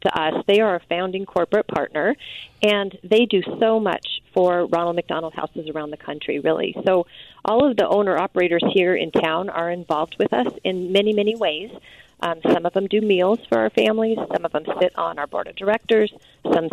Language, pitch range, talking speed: English, 165-200 Hz, 205 wpm